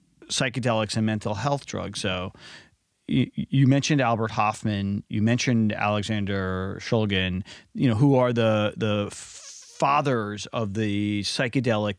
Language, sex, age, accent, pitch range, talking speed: English, male, 30-49, American, 105-135 Hz, 125 wpm